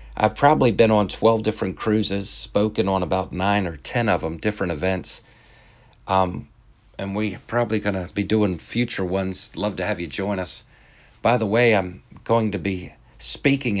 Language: English